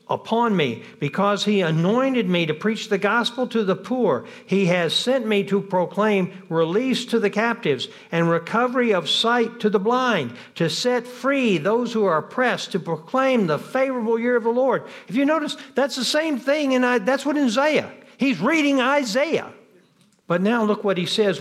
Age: 60-79